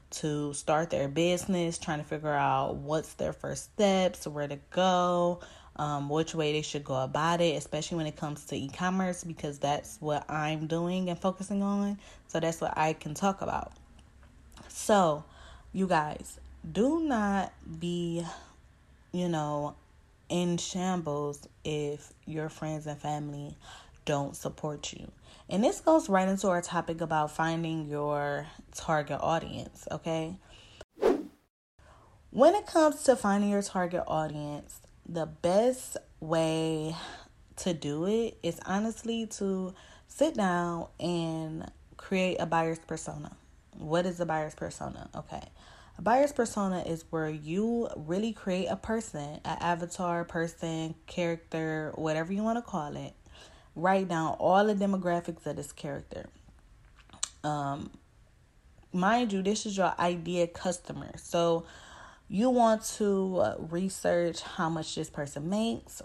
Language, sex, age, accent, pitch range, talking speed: English, female, 20-39, American, 150-190 Hz, 135 wpm